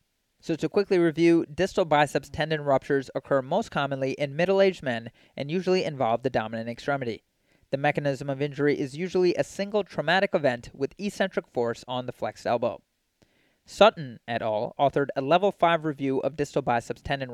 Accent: American